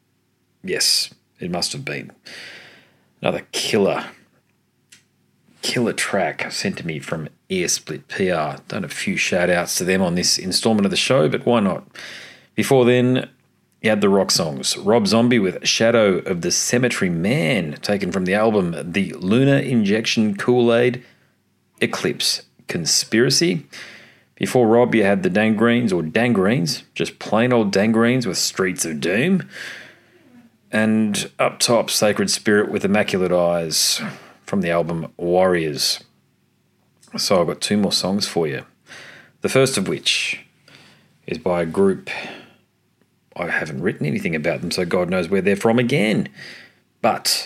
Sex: male